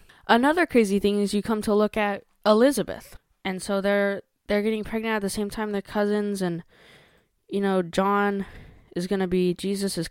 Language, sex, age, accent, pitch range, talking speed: English, female, 10-29, American, 170-215 Hz, 180 wpm